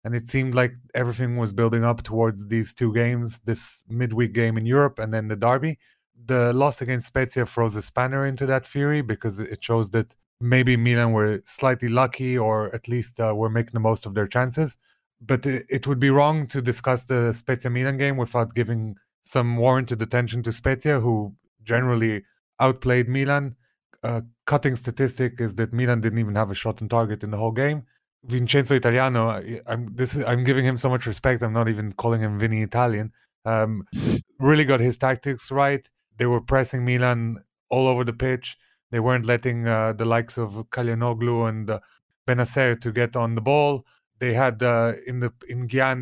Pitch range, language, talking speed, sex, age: 115-130 Hz, English, 185 wpm, male, 30-49